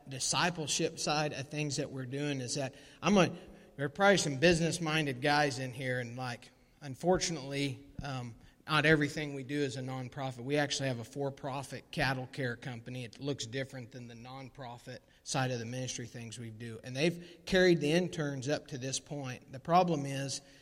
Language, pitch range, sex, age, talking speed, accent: English, 130-155 Hz, male, 40-59, 185 wpm, American